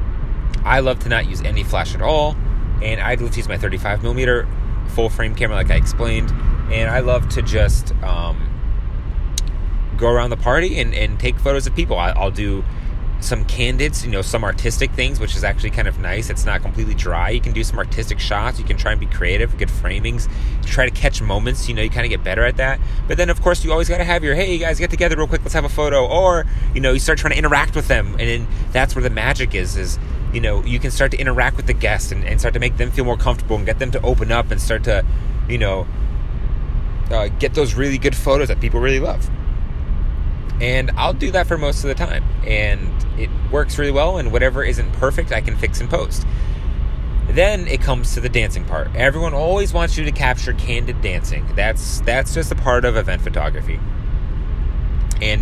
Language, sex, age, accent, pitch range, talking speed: English, male, 30-49, American, 95-125 Hz, 230 wpm